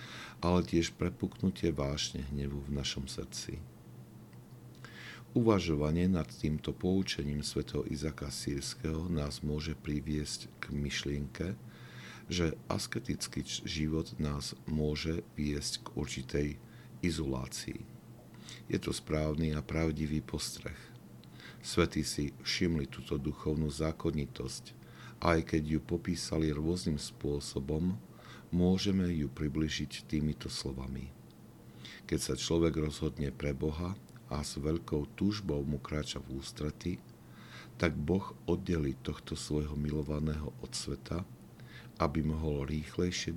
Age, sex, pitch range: 50-69, male, 70-80 Hz